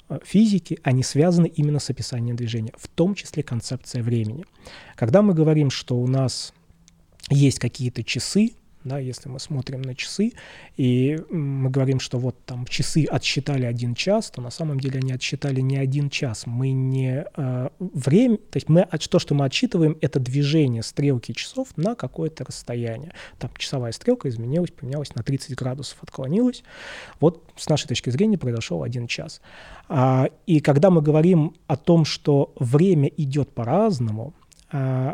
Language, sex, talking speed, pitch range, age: Russian, male, 160 wpm, 130-170 Hz, 20-39